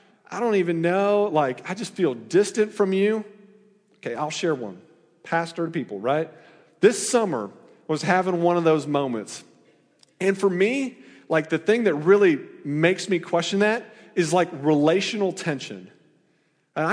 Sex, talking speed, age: male, 155 wpm, 40-59